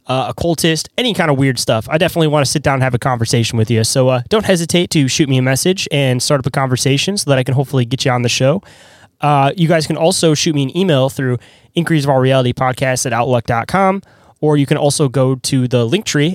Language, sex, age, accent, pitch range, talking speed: English, male, 10-29, American, 130-155 Hz, 265 wpm